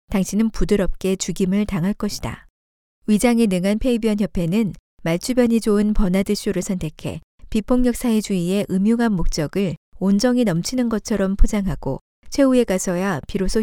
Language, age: Korean, 40-59